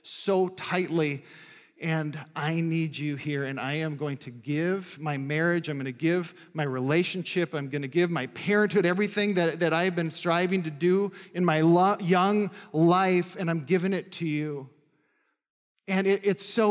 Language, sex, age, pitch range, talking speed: English, male, 40-59, 150-185 Hz, 170 wpm